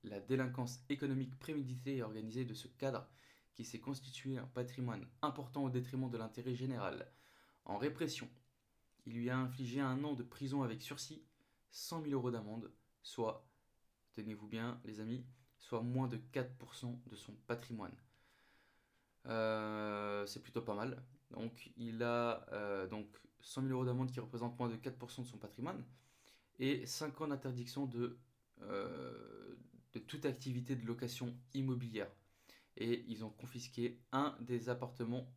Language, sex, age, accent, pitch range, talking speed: French, male, 20-39, French, 110-130 Hz, 150 wpm